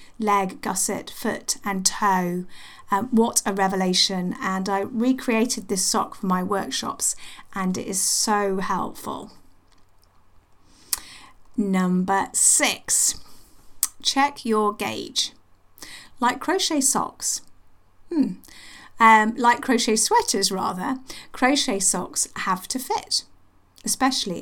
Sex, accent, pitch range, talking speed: female, British, 190-235 Hz, 105 wpm